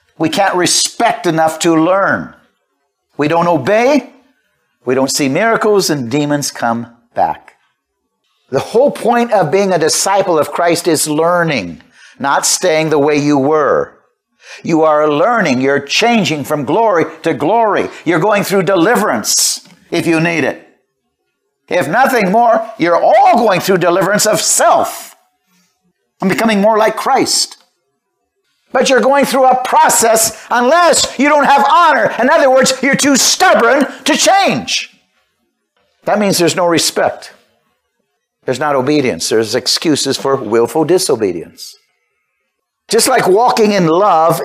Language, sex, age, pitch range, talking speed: English, male, 50-69, 155-230 Hz, 140 wpm